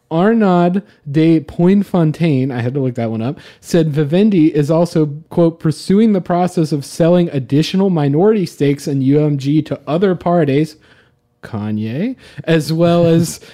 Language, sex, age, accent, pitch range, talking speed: English, male, 30-49, American, 135-175 Hz, 140 wpm